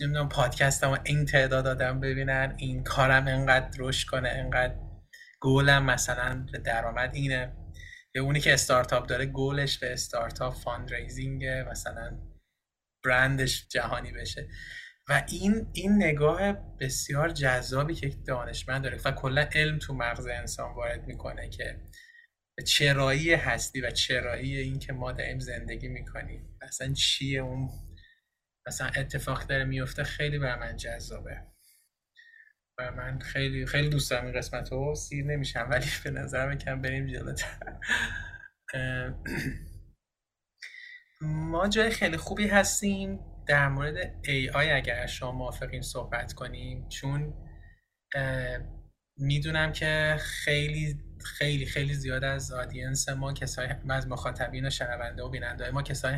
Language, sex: Persian, male